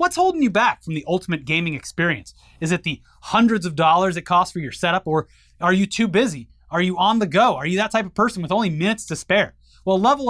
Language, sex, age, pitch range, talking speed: English, male, 30-49, 160-205 Hz, 250 wpm